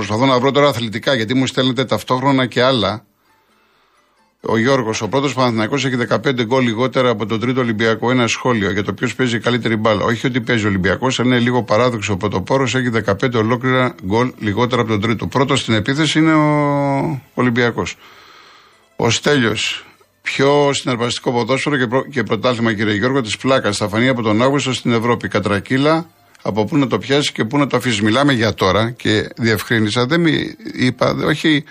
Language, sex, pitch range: Greek, male, 105-130 Hz